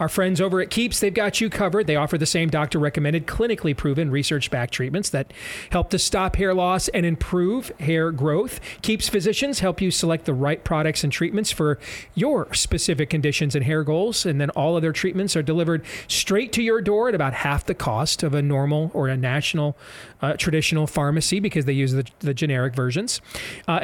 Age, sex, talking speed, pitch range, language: 40-59, male, 195 wpm, 150-195 Hz, English